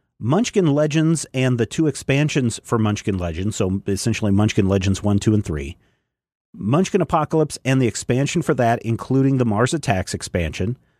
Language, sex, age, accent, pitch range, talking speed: English, male, 40-59, American, 105-140 Hz, 160 wpm